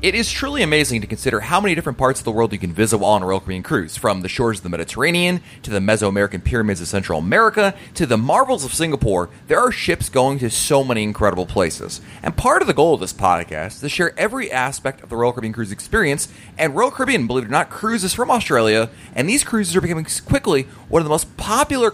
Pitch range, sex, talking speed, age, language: 110-170 Hz, male, 245 wpm, 30-49, English